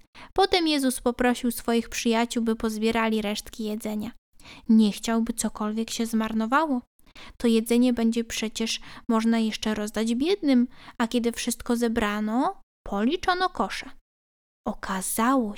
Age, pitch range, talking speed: 10-29, 230-270 Hz, 110 wpm